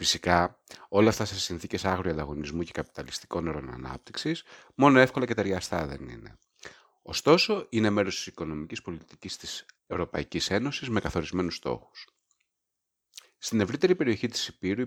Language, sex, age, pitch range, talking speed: Greek, male, 30-49, 80-110 Hz, 135 wpm